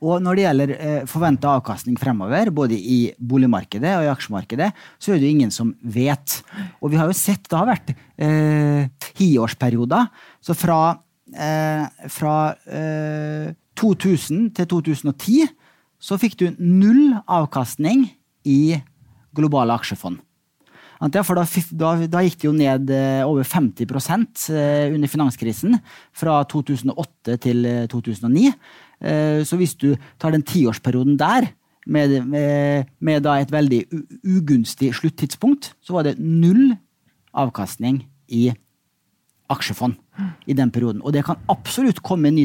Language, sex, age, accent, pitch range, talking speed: English, male, 30-49, Norwegian, 130-170 Hz, 130 wpm